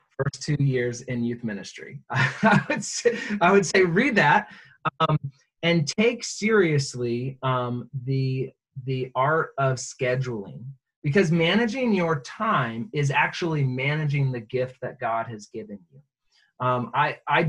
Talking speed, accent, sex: 140 wpm, American, male